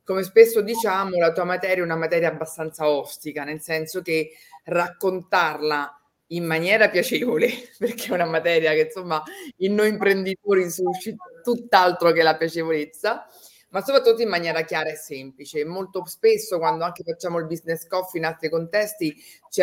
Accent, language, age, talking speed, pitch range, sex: native, Italian, 30-49, 155 wpm, 160-220 Hz, female